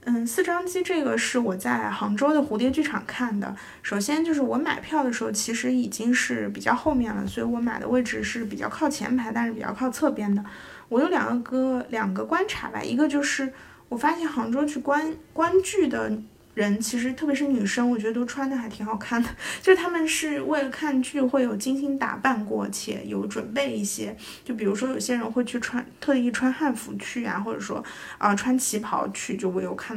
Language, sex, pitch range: Chinese, female, 220-275 Hz